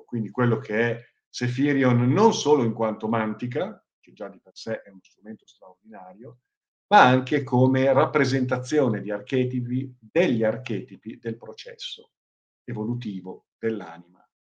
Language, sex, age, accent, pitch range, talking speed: Italian, male, 50-69, native, 105-130 Hz, 130 wpm